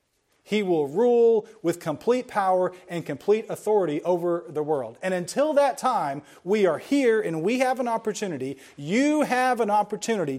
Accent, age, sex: American, 40-59, male